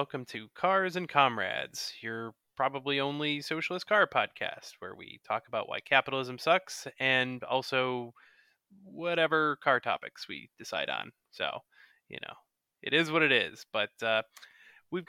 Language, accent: English, American